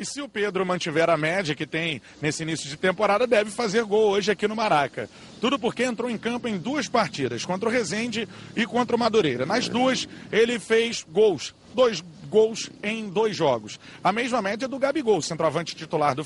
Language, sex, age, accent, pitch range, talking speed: Portuguese, male, 40-59, Brazilian, 165-225 Hz, 195 wpm